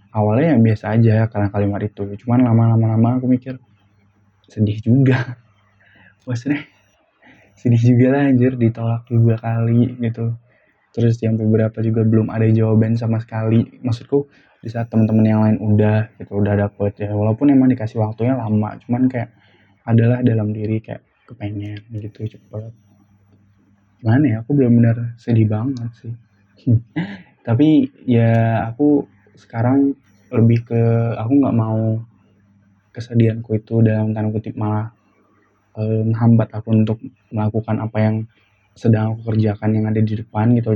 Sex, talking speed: male, 140 wpm